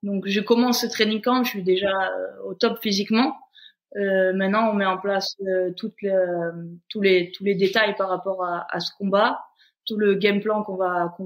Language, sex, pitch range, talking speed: French, female, 185-225 Hz, 210 wpm